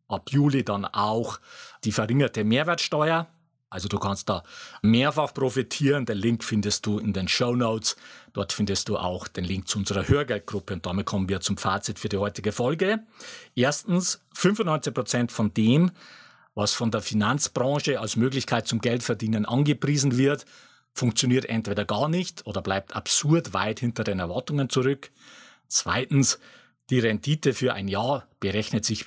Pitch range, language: 105-140 Hz, German